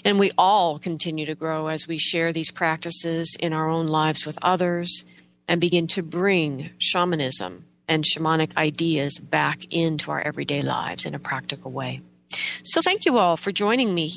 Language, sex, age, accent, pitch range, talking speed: English, female, 40-59, American, 155-205 Hz, 175 wpm